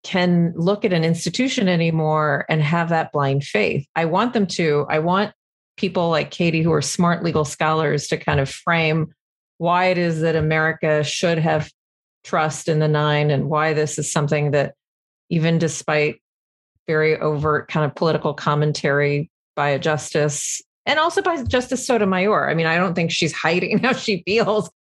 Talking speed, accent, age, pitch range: 175 wpm, American, 40-59, 155-180 Hz